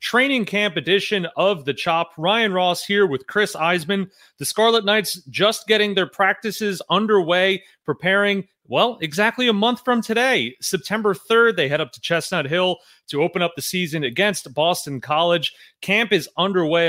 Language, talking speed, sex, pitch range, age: English, 165 wpm, male, 145-195 Hz, 30-49